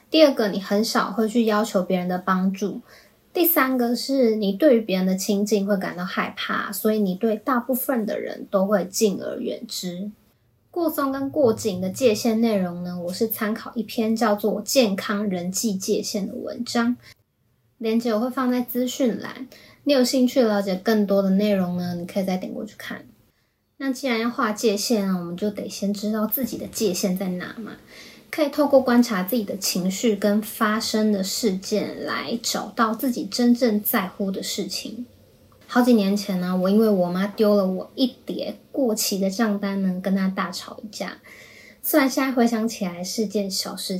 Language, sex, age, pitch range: Chinese, female, 20-39, 195-240 Hz